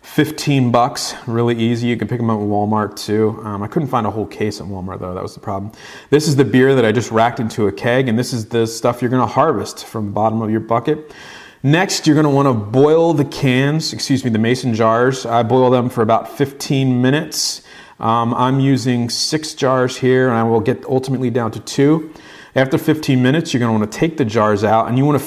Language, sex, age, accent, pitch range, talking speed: English, male, 30-49, American, 110-130 Hz, 240 wpm